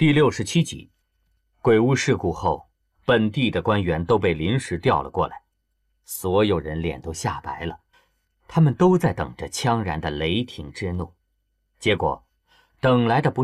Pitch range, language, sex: 85-125 Hz, Chinese, male